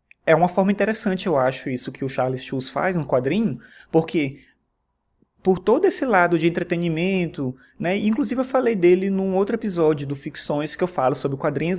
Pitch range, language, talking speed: 140-185 Hz, Portuguese, 185 wpm